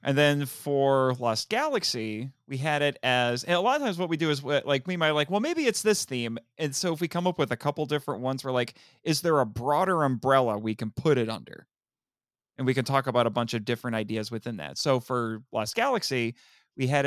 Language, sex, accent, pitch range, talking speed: English, male, American, 120-150 Hz, 235 wpm